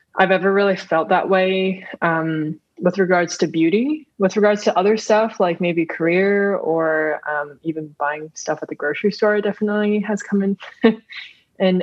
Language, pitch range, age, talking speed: English, 170-210 Hz, 20-39, 165 wpm